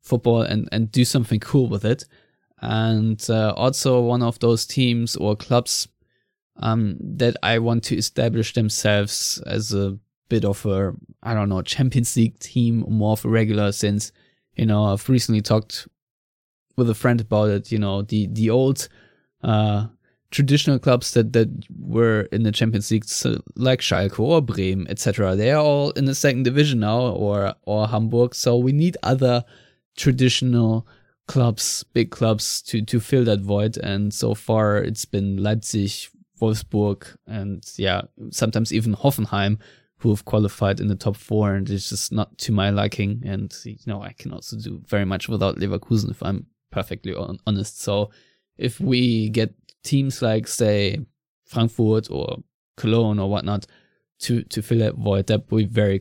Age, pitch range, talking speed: 20-39, 105-120 Hz, 170 wpm